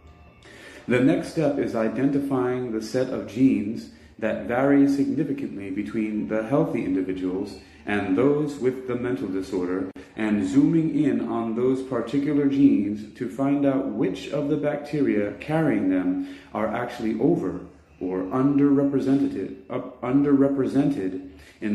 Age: 30-49